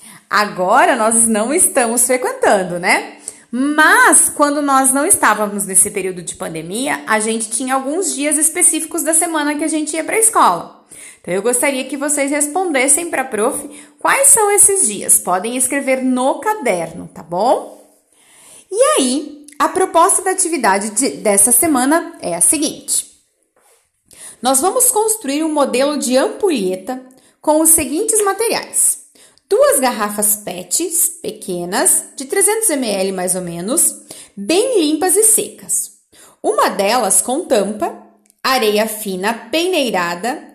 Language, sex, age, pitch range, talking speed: Portuguese, female, 30-49, 225-340 Hz, 135 wpm